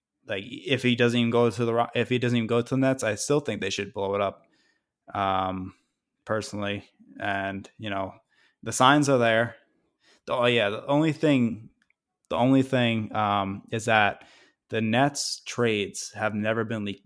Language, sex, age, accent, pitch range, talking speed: English, male, 20-39, American, 100-120 Hz, 185 wpm